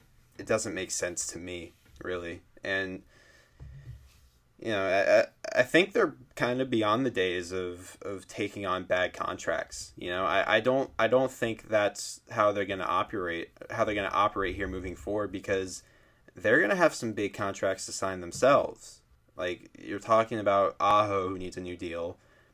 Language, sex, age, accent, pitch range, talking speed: English, male, 20-39, American, 90-100 Hz, 180 wpm